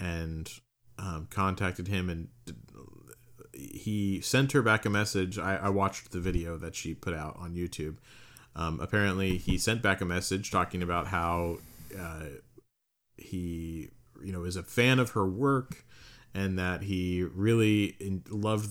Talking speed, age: 150 wpm, 30-49